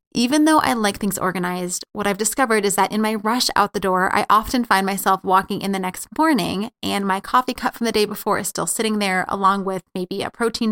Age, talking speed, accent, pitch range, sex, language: 20-39, 240 wpm, American, 190-230 Hz, female, English